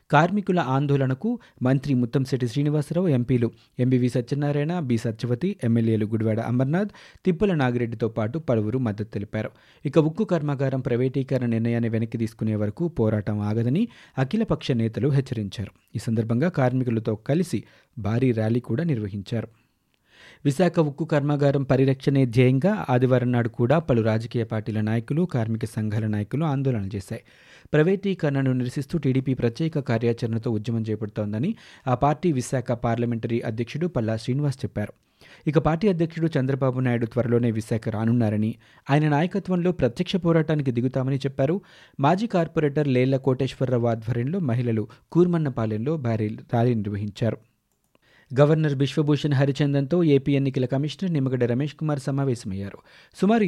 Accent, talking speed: native, 120 wpm